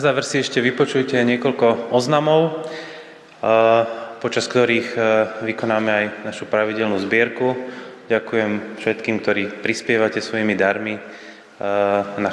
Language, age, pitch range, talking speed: Slovak, 20-39, 100-125 Hz, 95 wpm